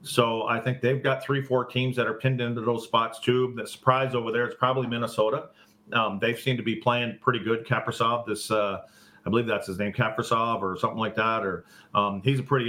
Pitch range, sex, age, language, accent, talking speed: 105-125 Hz, male, 40-59, English, American, 220 wpm